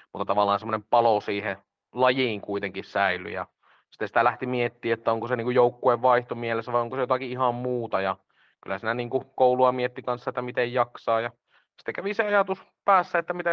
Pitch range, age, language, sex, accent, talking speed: 110-130 Hz, 30-49, Finnish, male, native, 190 wpm